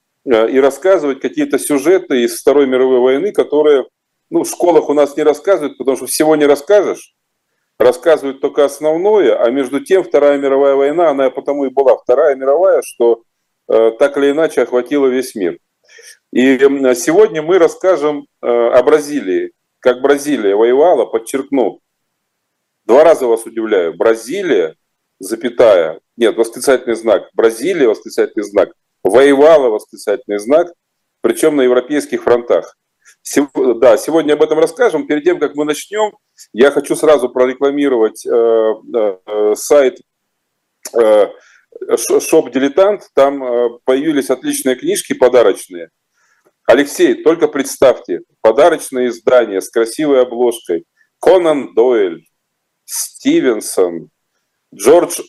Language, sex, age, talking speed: Russian, male, 40-59, 120 wpm